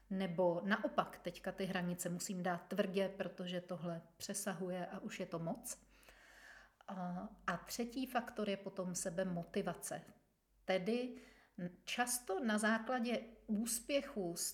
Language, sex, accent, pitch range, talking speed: Czech, female, native, 190-225 Hz, 120 wpm